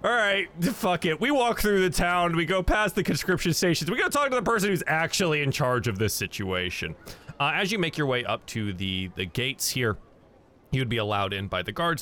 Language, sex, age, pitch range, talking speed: English, male, 30-49, 100-155 Hz, 230 wpm